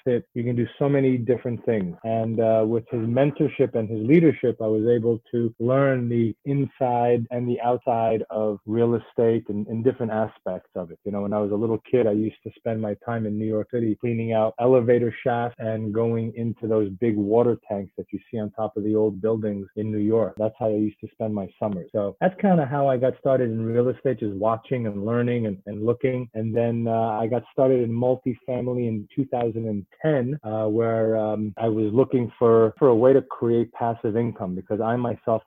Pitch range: 110-125 Hz